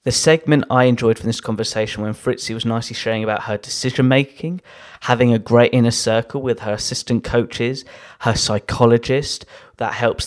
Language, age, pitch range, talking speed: English, 20-39, 110-125 Hz, 170 wpm